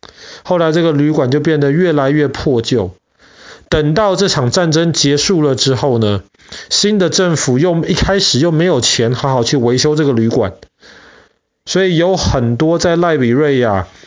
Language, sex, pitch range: Chinese, male, 125-165 Hz